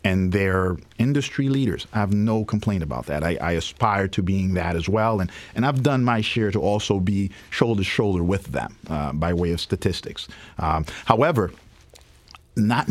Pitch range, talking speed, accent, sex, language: 85-115 Hz, 185 wpm, American, male, English